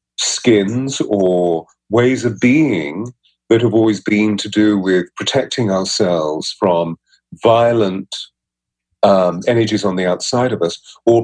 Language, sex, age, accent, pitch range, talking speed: English, male, 40-59, British, 95-120 Hz, 130 wpm